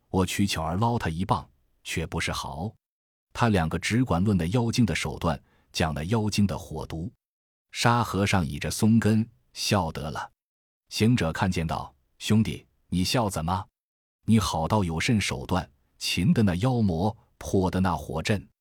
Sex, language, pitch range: male, Chinese, 80-105 Hz